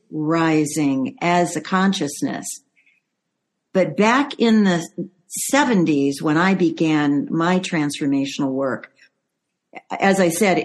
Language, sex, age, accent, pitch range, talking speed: English, female, 50-69, American, 160-200 Hz, 100 wpm